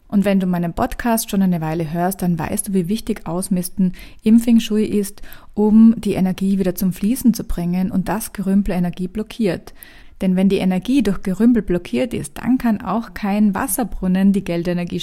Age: 30-49